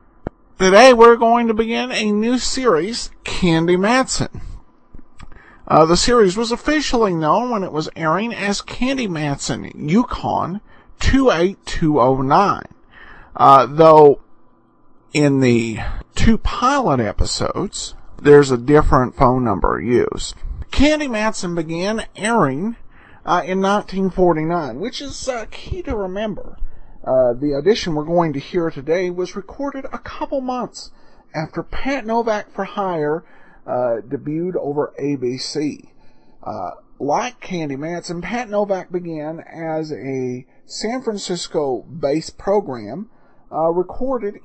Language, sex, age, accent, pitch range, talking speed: English, male, 50-69, American, 150-230 Hz, 120 wpm